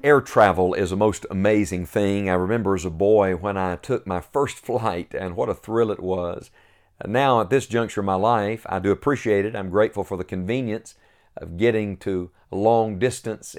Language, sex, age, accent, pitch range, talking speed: English, male, 50-69, American, 95-115 Hz, 205 wpm